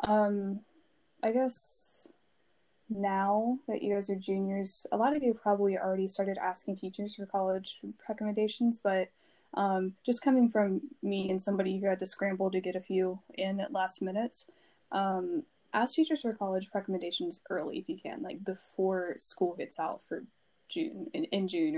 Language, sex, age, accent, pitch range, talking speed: English, female, 10-29, American, 185-225 Hz, 170 wpm